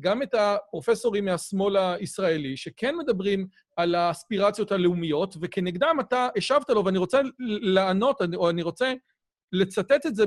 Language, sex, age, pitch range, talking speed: Hebrew, male, 40-59, 180-250 Hz, 135 wpm